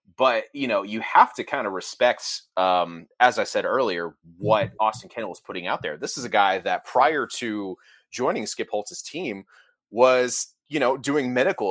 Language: English